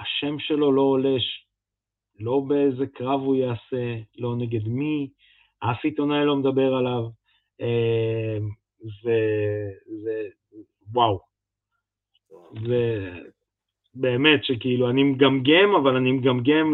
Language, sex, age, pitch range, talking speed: Hebrew, male, 20-39, 120-150 Hz, 105 wpm